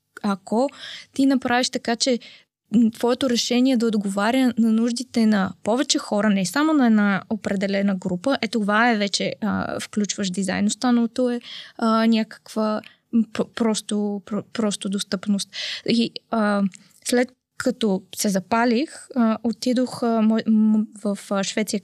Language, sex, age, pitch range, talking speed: Bulgarian, female, 20-39, 200-230 Hz, 120 wpm